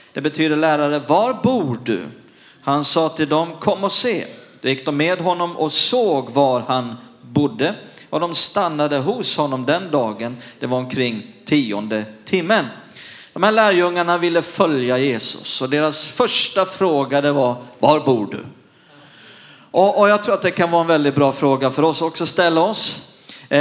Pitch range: 130-175 Hz